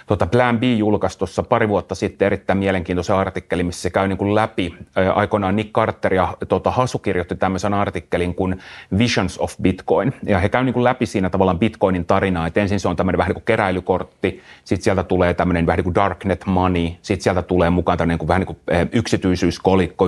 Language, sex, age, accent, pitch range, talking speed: Finnish, male, 30-49, native, 90-105 Hz, 195 wpm